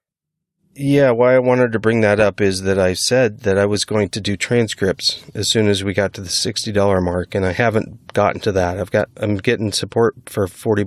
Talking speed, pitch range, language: 225 wpm, 100-120 Hz, English